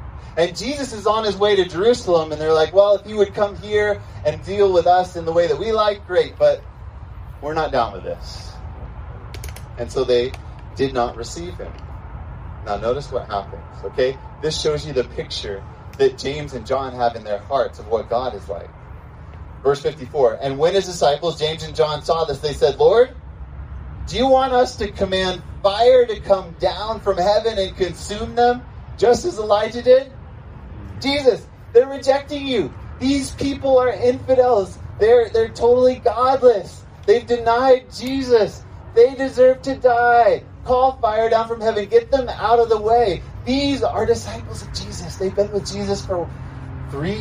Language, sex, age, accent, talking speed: English, male, 30-49, American, 175 wpm